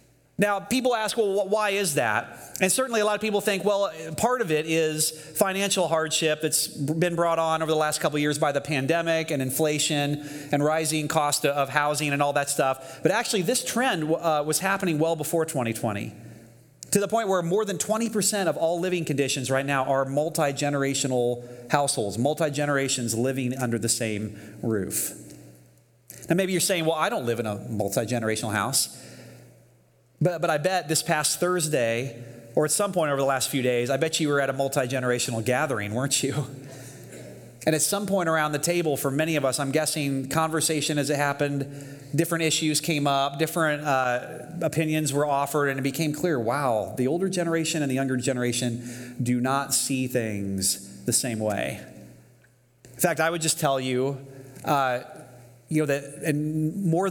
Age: 30-49